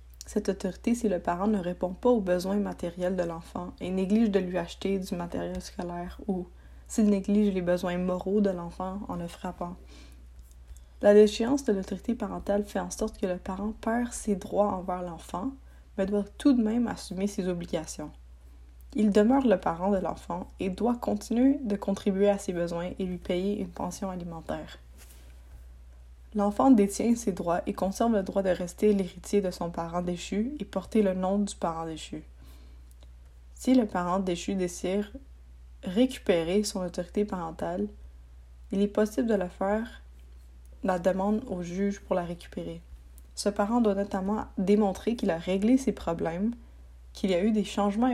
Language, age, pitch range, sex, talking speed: French, 20-39, 170-205 Hz, female, 170 wpm